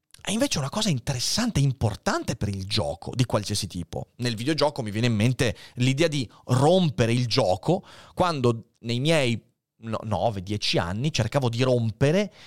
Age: 30-49